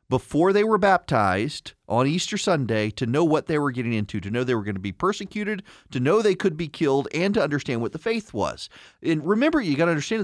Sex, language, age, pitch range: male, English, 40-59, 115-170 Hz